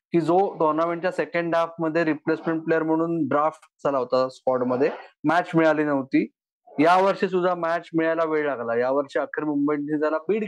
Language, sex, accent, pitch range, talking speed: Marathi, male, native, 160-200 Hz, 165 wpm